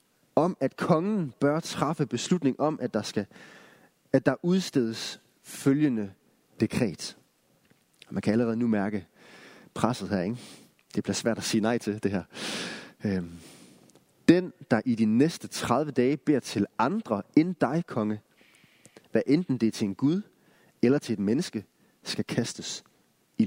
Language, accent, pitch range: Danish, native, 105-160 Hz